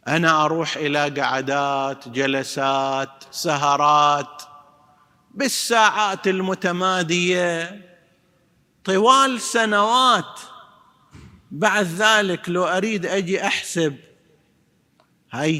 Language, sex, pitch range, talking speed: Arabic, male, 145-185 Hz, 65 wpm